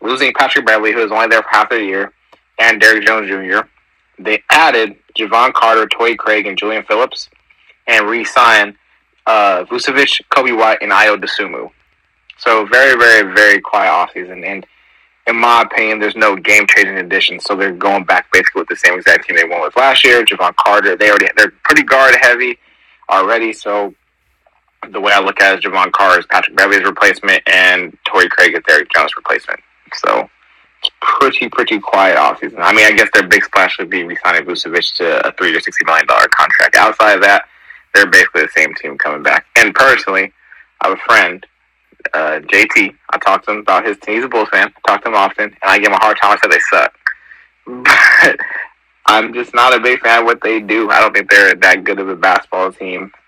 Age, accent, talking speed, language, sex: 20-39, American, 205 wpm, English, male